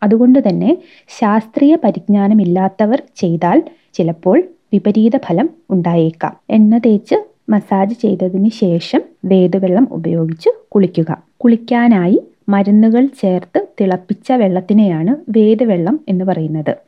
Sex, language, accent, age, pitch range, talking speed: female, Malayalam, native, 20-39, 185-240 Hz, 85 wpm